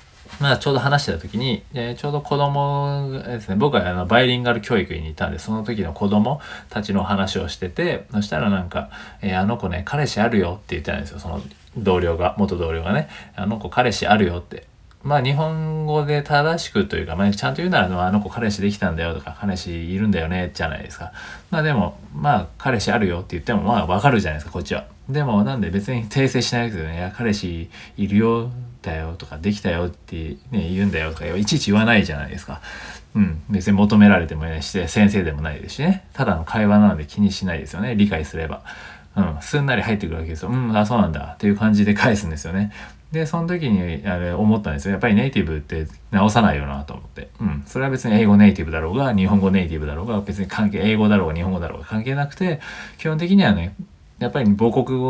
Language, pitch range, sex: Japanese, 85-120 Hz, male